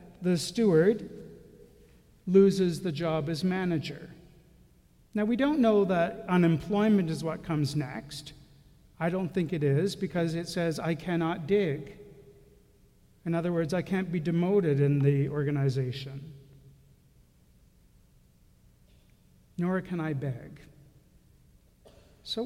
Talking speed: 115 wpm